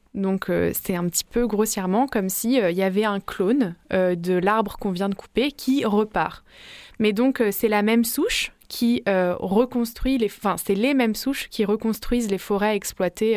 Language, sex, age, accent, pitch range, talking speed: French, female, 20-39, French, 195-245 Hz, 200 wpm